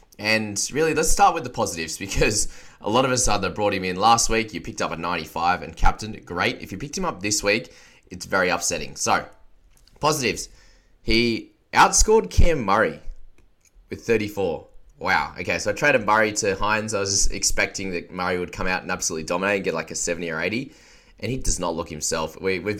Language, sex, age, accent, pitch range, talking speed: English, male, 20-39, Australian, 90-115 Hz, 210 wpm